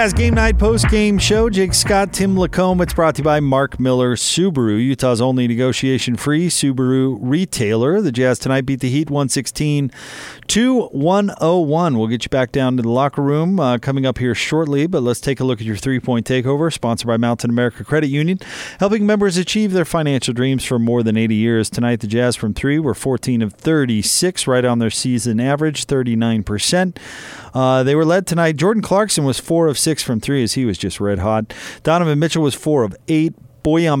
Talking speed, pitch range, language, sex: 200 wpm, 115-155 Hz, English, male